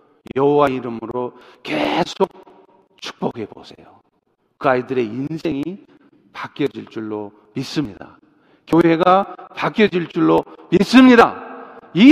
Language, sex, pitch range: Korean, male, 165-220 Hz